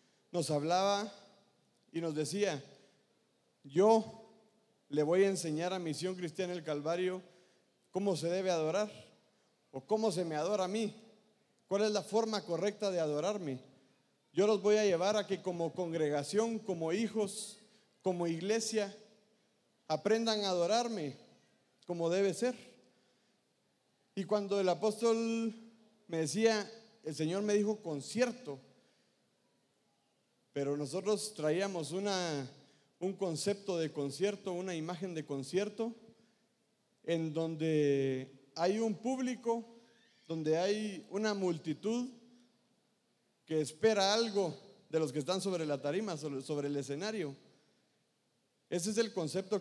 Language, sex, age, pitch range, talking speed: English, male, 40-59, 160-215 Hz, 125 wpm